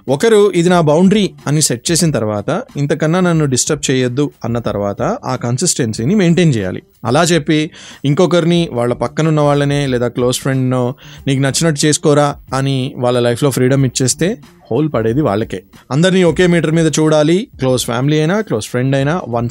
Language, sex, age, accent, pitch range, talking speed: Telugu, male, 20-39, native, 120-155 Hz, 155 wpm